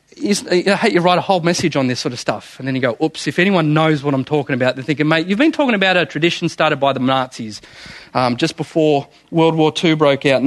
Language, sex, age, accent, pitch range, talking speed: English, male, 30-49, Australian, 130-165 Hz, 265 wpm